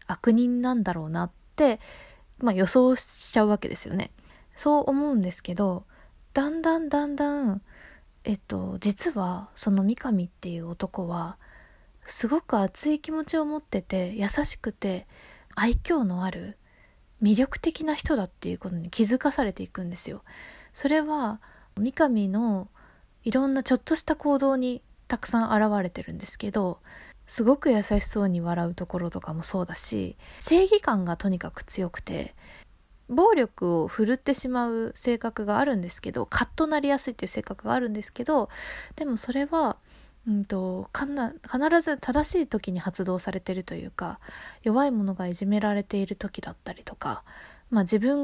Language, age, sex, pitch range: Japanese, 20-39, female, 195-280 Hz